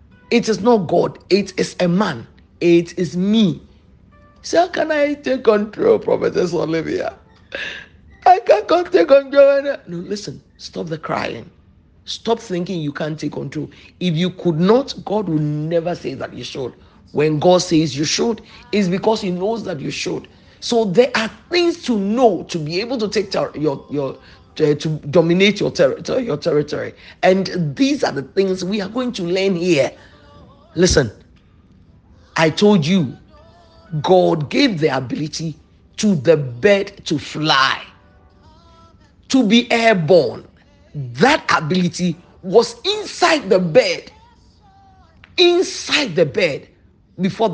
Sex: male